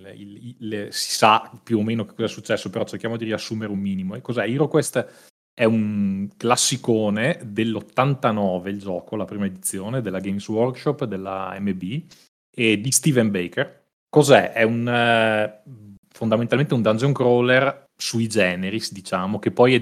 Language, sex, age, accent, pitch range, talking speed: Italian, male, 30-49, native, 100-120 Hz, 150 wpm